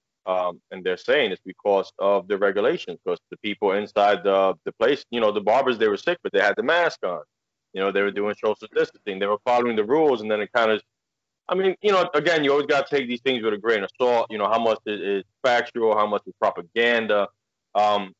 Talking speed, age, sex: 240 wpm, 20-39, male